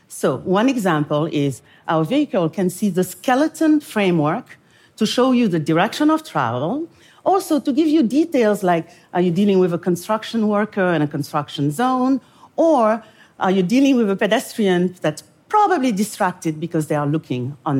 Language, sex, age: English, female, 50-69